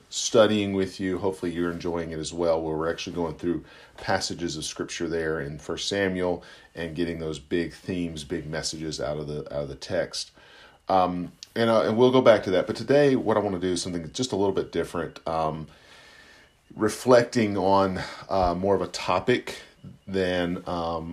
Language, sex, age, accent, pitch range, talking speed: English, male, 40-59, American, 80-95 Hz, 195 wpm